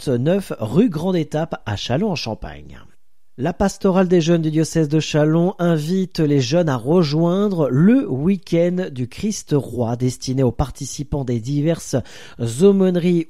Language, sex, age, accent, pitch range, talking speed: French, male, 40-59, French, 130-175 Hz, 135 wpm